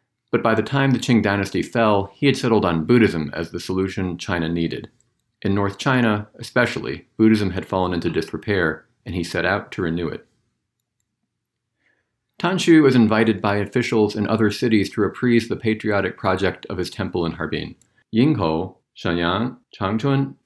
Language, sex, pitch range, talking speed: English, male, 85-115 Hz, 160 wpm